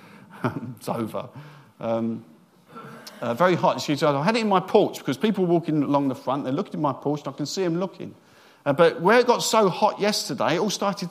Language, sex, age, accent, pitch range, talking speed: English, male, 50-69, British, 120-195 Hz, 230 wpm